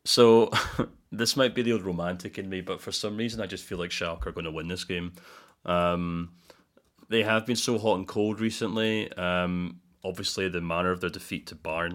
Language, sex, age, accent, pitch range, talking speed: English, male, 30-49, British, 85-100 Hz, 205 wpm